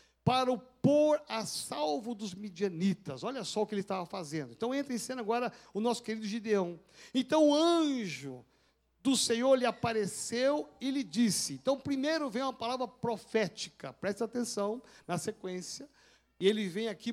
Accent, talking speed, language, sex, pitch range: Brazilian, 165 wpm, Portuguese, male, 200-260 Hz